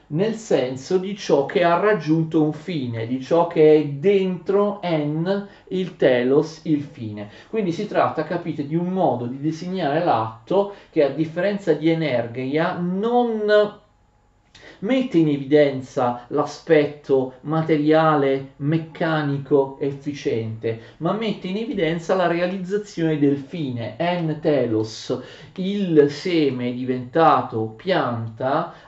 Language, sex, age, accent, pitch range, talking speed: Italian, male, 40-59, native, 130-175 Hz, 115 wpm